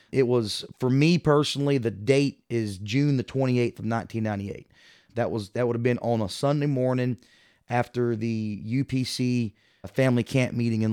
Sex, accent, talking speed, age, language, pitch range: male, American, 165 wpm, 30-49, English, 115-135 Hz